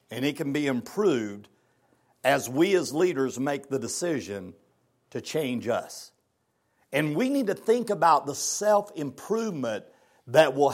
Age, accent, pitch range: 60-79, American, 130-190 Hz